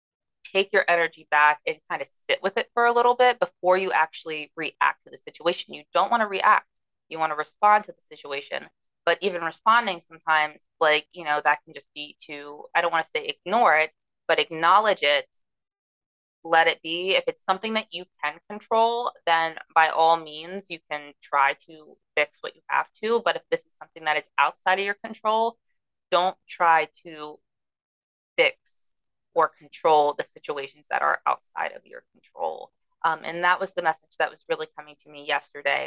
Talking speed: 195 wpm